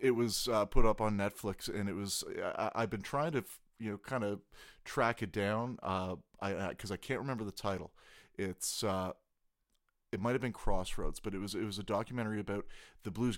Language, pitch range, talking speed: English, 95-115 Hz, 205 wpm